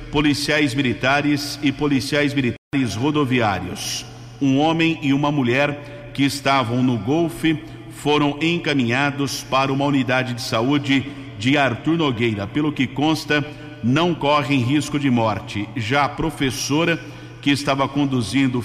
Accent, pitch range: Brazilian, 125-145 Hz